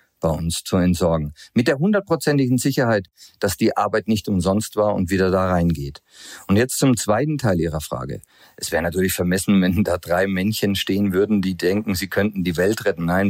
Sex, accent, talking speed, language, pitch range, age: male, German, 195 wpm, German, 100-130 Hz, 40-59